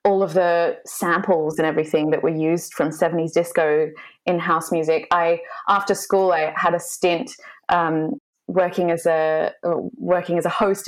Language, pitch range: English, 170-235 Hz